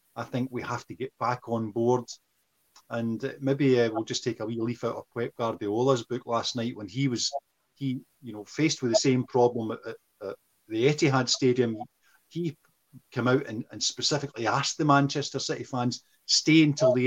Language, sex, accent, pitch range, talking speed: English, male, British, 110-130 Hz, 195 wpm